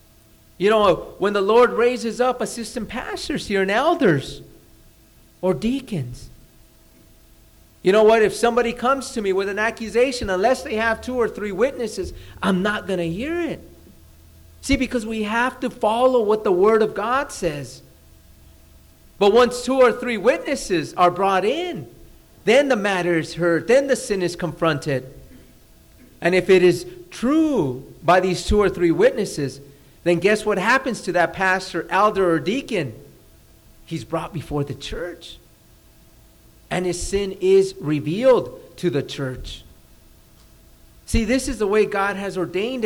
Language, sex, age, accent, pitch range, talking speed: English, male, 40-59, American, 165-240 Hz, 155 wpm